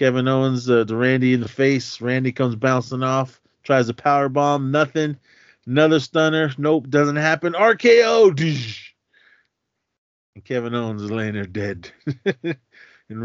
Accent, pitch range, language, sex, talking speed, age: American, 100-130 Hz, English, male, 135 wpm, 30-49